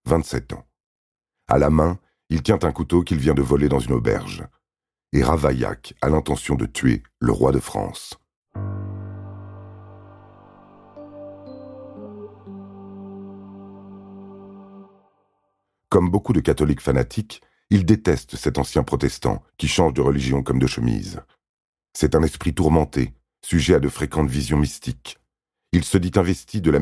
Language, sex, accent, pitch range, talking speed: French, male, French, 70-100 Hz, 130 wpm